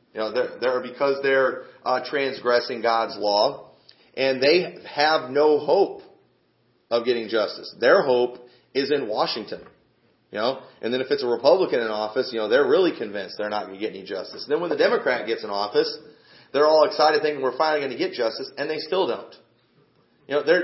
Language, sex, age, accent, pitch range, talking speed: English, male, 40-59, American, 145-225 Hz, 205 wpm